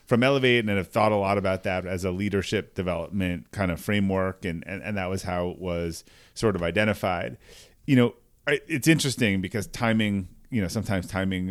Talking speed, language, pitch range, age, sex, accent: 195 wpm, English, 95-125 Hz, 30-49, male, American